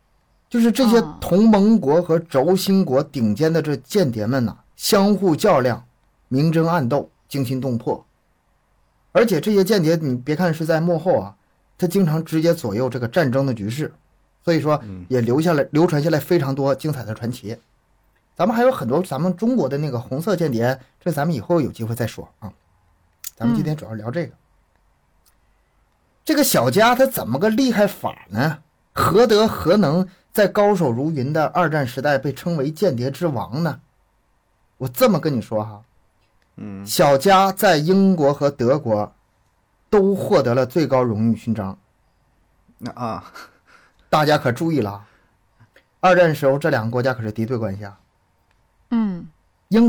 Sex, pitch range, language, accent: male, 115-175 Hz, Chinese, native